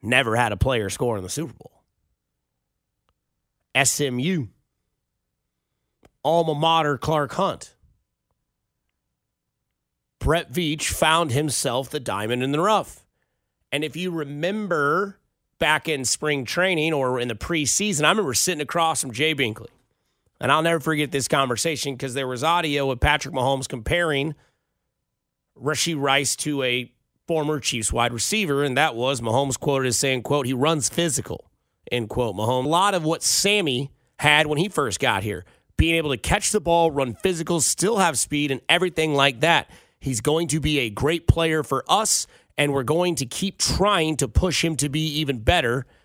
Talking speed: 165 wpm